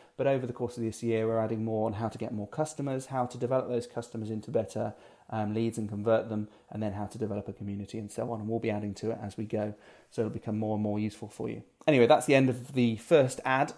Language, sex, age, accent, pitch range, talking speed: English, male, 30-49, British, 110-145 Hz, 280 wpm